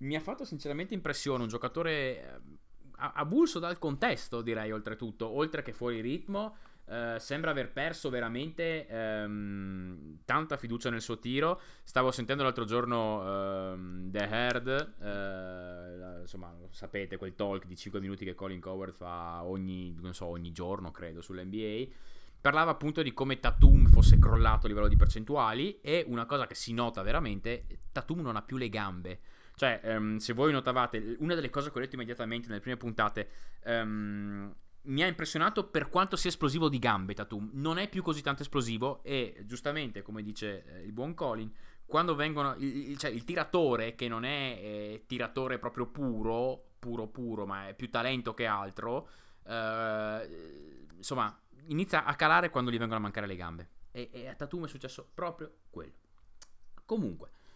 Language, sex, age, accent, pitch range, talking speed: Italian, male, 20-39, native, 100-140 Hz, 165 wpm